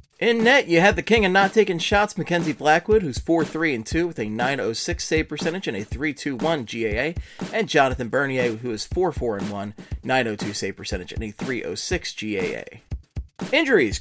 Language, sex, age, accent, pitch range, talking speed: English, male, 30-49, American, 115-175 Hz, 165 wpm